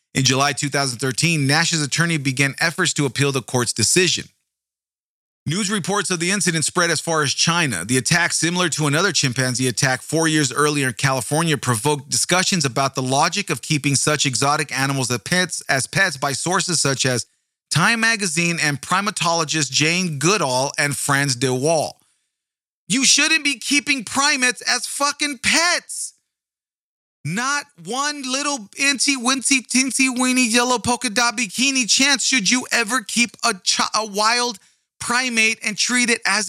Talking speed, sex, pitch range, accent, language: 155 wpm, male, 145-240 Hz, American, English